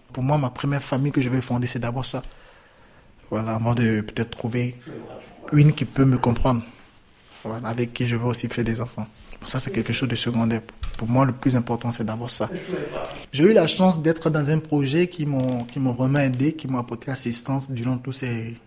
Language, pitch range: French, 115-140 Hz